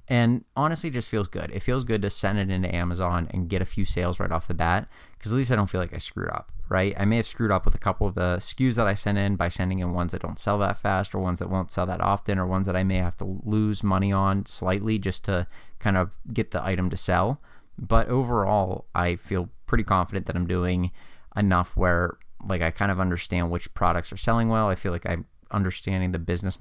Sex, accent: male, American